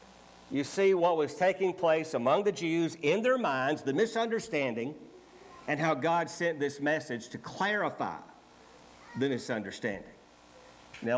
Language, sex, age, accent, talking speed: English, male, 50-69, American, 135 wpm